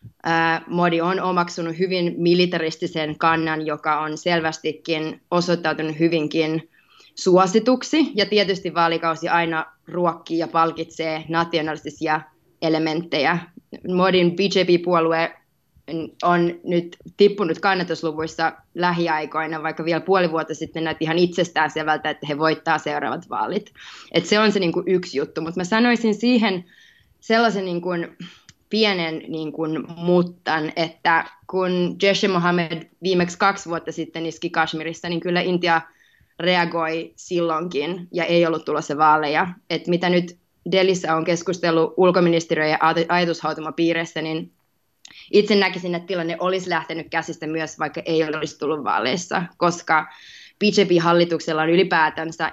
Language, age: Finnish, 20-39